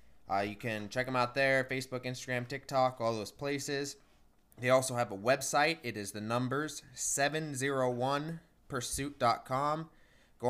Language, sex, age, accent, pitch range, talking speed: English, male, 20-39, American, 125-145 Hz, 135 wpm